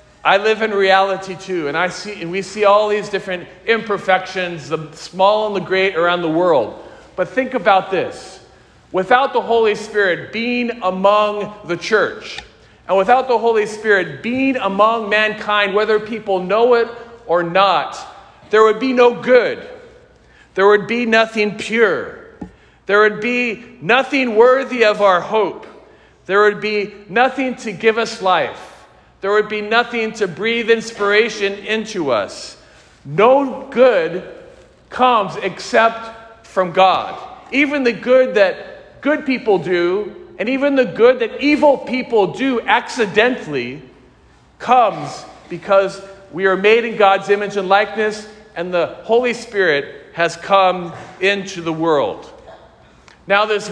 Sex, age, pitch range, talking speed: male, 40-59, 195-235 Hz, 140 wpm